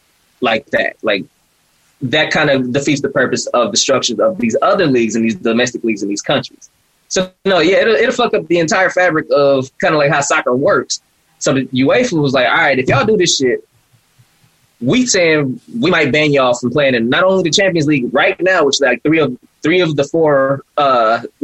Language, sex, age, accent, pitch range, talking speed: English, male, 20-39, American, 135-185 Hz, 215 wpm